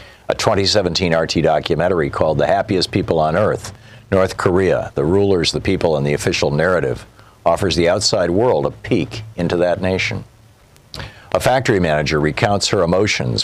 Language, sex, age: English, male, 50-69